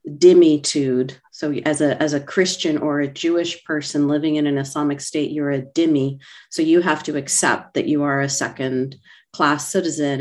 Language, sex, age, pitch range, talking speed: English, female, 40-59, 140-180 Hz, 180 wpm